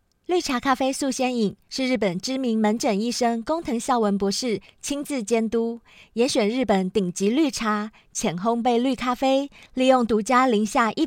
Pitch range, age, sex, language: 205-260 Hz, 20-39, female, Chinese